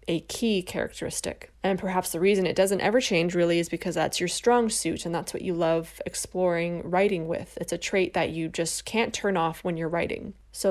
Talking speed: 220 wpm